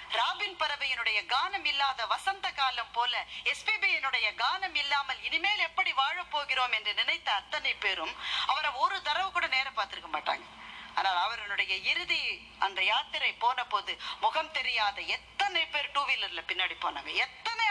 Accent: native